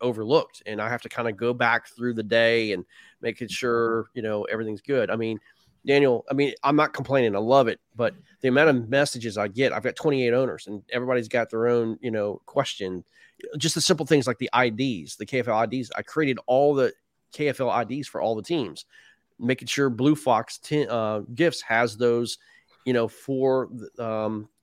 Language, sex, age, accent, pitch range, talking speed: English, male, 30-49, American, 115-135 Hz, 195 wpm